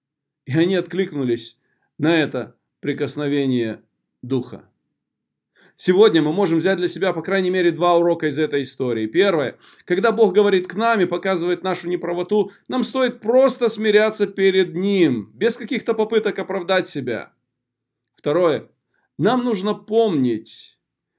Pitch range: 145-195 Hz